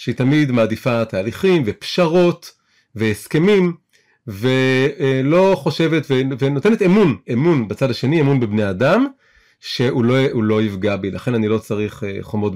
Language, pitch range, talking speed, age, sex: Hebrew, 110-155 Hz, 125 wpm, 30-49, male